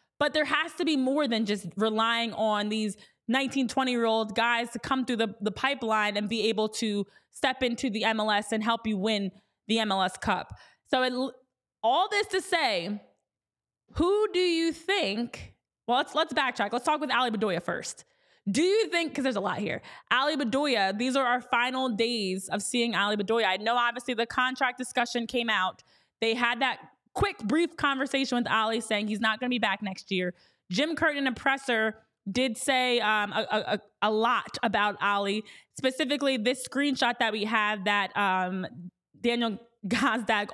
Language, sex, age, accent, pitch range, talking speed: English, female, 20-39, American, 215-265 Hz, 185 wpm